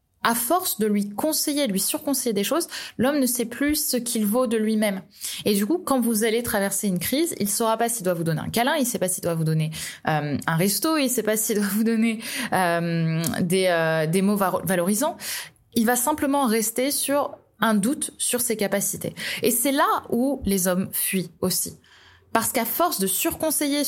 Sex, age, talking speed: female, 20-39, 215 wpm